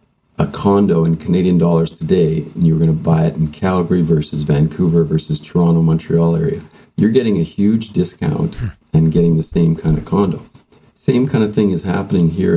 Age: 50-69